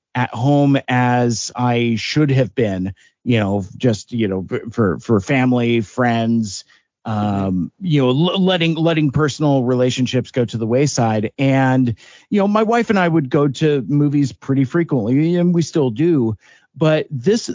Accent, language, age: American, English, 50-69